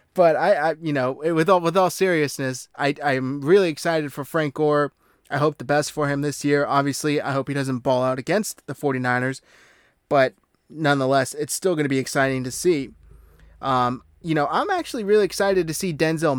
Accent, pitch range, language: American, 140-170 Hz, English